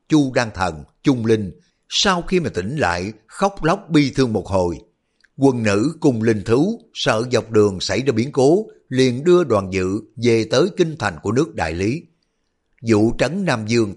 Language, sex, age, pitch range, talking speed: Vietnamese, male, 60-79, 100-140 Hz, 190 wpm